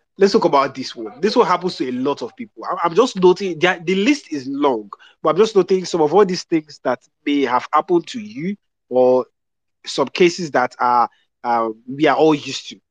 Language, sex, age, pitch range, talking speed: English, male, 20-39, 125-185 Hz, 210 wpm